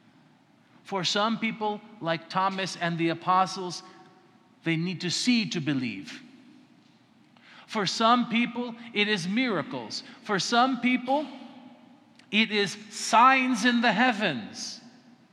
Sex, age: male, 50-69